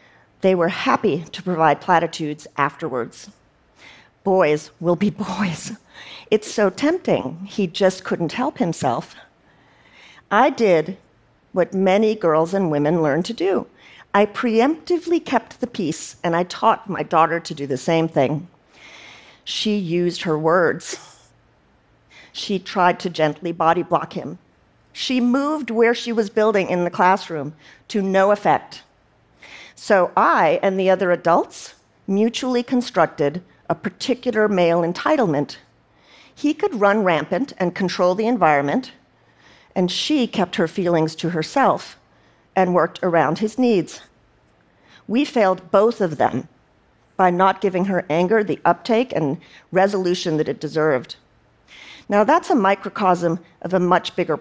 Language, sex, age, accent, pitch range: Korean, female, 50-69, American, 170-220 Hz